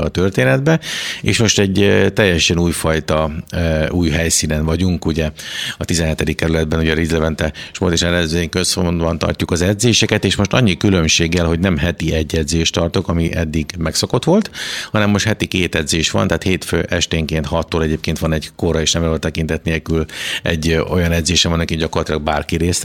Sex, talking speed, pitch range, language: male, 170 wpm, 80-95 Hz, Hungarian